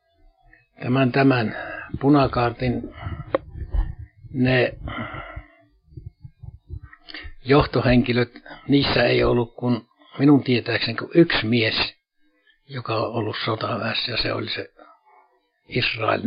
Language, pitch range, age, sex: Finnish, 110-135 Hz, 60-79, male